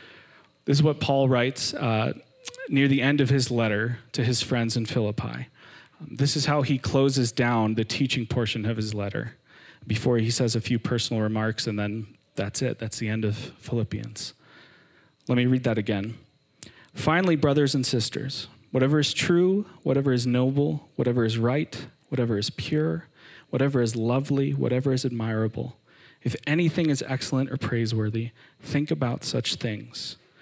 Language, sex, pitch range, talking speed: English, male, 115-140 Hz, 160 wpm